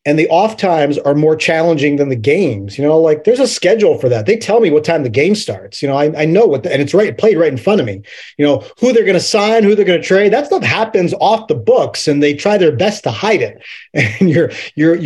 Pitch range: 155-200 Hz